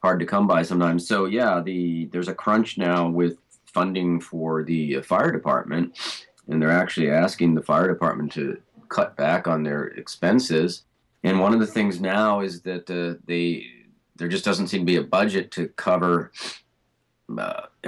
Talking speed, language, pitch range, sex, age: 175 wpm, English, 80-90 Hz, male, 30-49